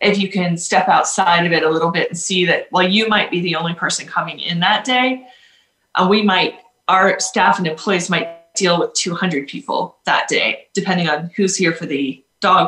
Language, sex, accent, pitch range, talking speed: English, female, American, 160-195 Hz, 215 wpm